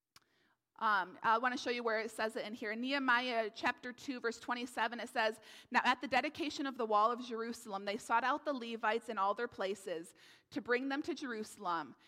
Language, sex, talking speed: English, female, 215 wpm